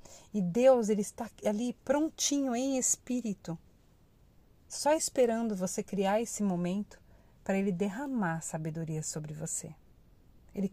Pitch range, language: 185-255 Hz, Portuguese